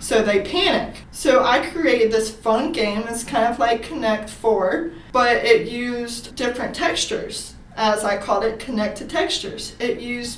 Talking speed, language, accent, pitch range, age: 160 wpm, English, American, 215-250 Hz, 20-39